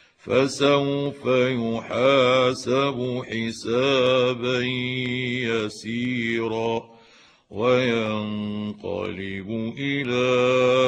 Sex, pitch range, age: male, 115-140 Hz, 50-69